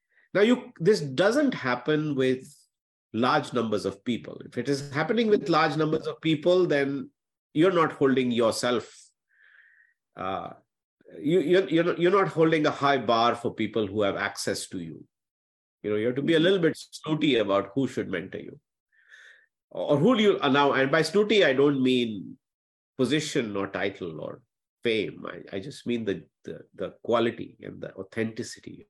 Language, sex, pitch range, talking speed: English, male, 115-175 Hz, 175 wpm